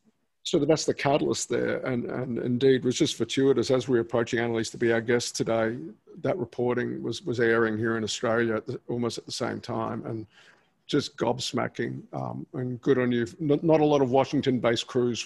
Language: English